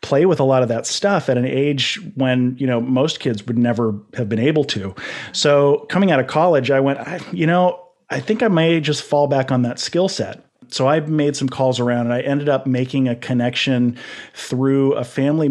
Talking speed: 220 wpm